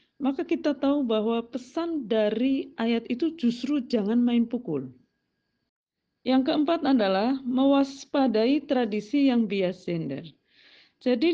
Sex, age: female, 40-59